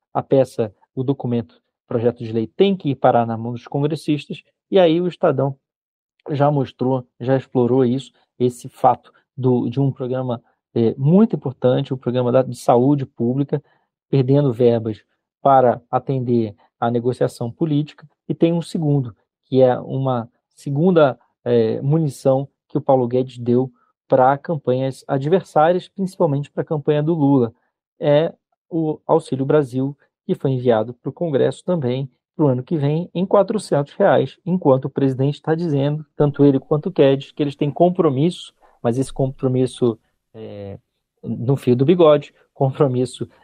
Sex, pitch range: male, 125-160 Hz